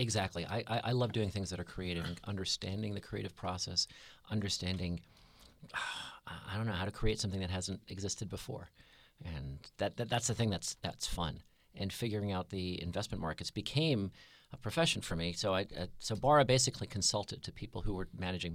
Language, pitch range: English, 90-115 Hz